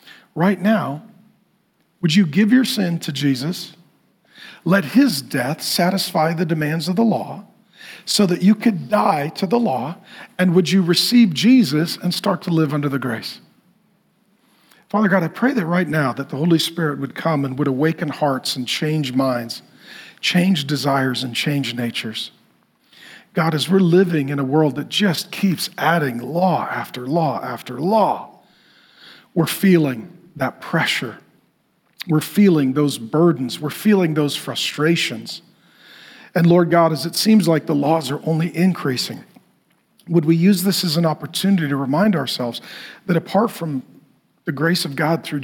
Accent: American